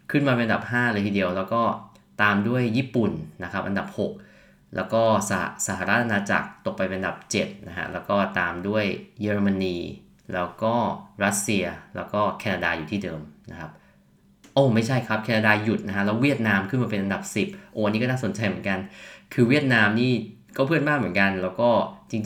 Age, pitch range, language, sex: 20-39, 100-115 Hz, Thai, male